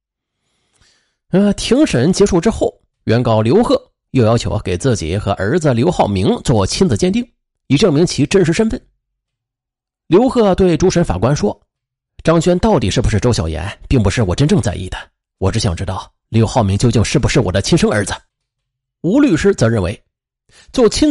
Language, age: Chinese, 30-49